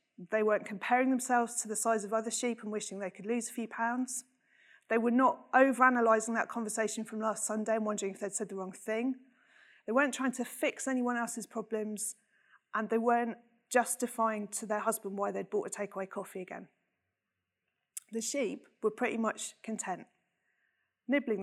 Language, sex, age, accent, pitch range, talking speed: English, female, 30-49, British, 200-245 Hz, 180 wpm